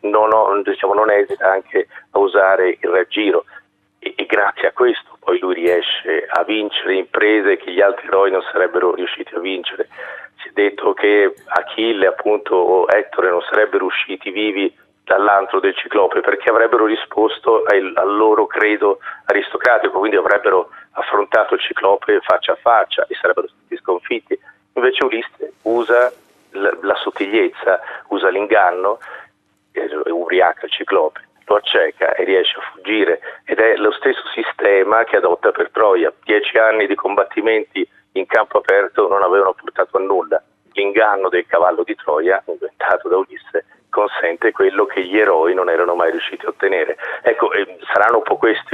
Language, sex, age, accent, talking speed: Italian, male, 40-59, native, 155 wpm